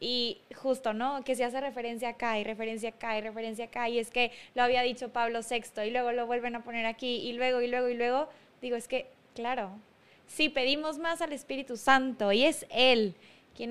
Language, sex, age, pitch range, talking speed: Spanish, female, 20-39, 235-285 Hz, 215 wpm